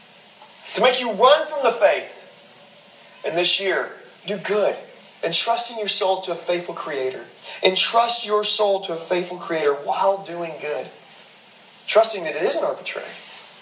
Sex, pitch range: male, 135-195 Hz